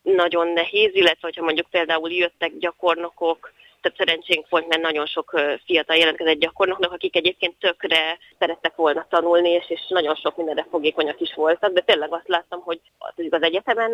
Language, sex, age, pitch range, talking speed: Hungarian, female, 20-39, 160-200 Hz, 160 wpm